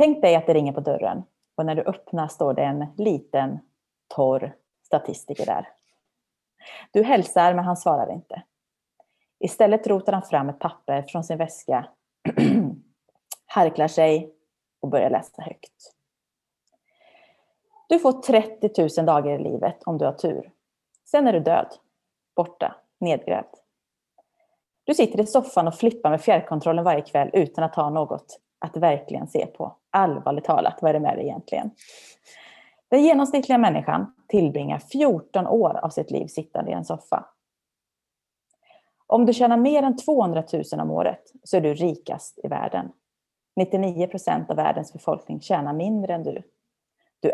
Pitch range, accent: 160-260 Hz, native